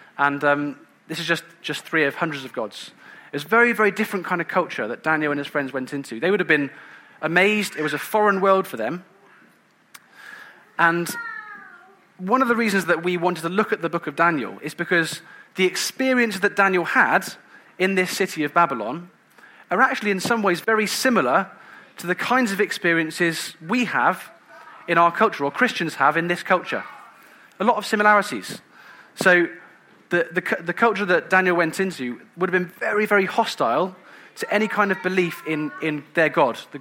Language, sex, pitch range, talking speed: English, male, 160-200 Hz, 190 wpm